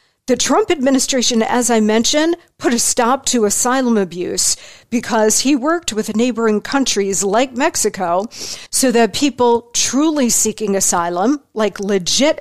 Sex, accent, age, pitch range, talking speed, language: female, American, 50-69, 210-280 Hz, 135 wpm, English